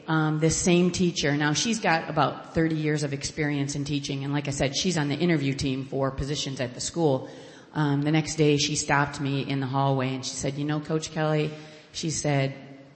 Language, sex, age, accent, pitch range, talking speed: English, female, 30-49, American, 135-155 Hz, 220 wpm